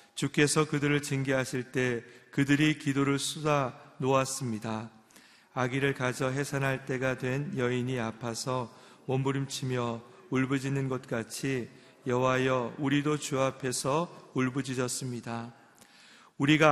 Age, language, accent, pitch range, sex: 40-59, Korean, native, 125-145 Hz, male